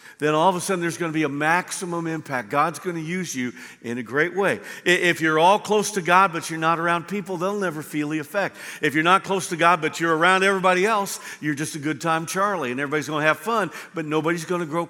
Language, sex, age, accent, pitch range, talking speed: English, male, 50-69, American, 150-190 Hz, 260 wpm